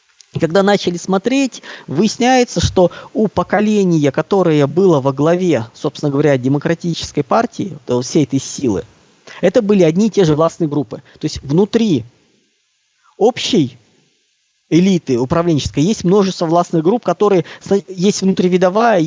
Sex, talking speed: male, 130 wpm